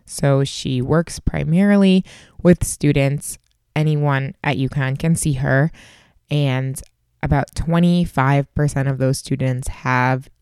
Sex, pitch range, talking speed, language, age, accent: female, 135-165 Hz, 110 wpm, English, 20-39, American